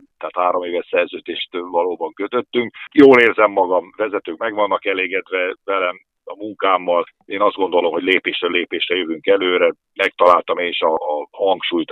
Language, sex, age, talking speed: Hungarian, male, 50-69, 145 wpm